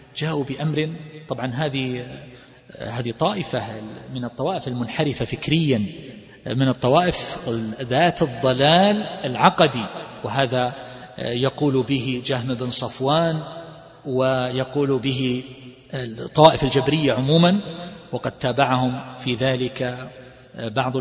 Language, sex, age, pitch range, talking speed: Arabic, male, 40-59, 130-170 Hz, 85 wpm